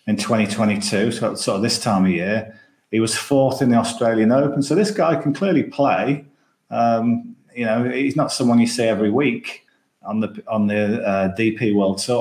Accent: British